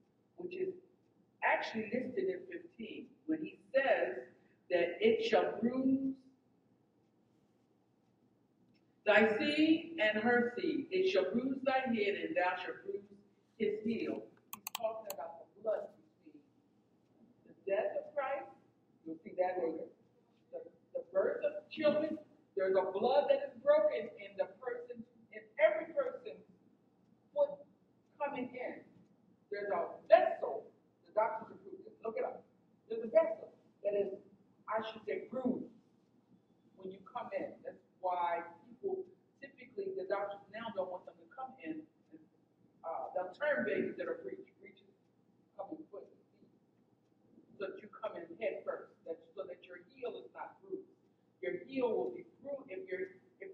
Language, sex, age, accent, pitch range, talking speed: English, female, 50-69, American, 200-320 Hz, 150 wpm